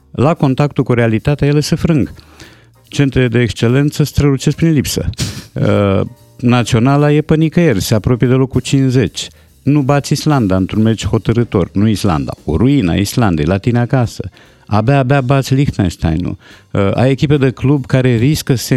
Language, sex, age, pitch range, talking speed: Romanian, male, 50-69, 95-140 Hz, 150 wpm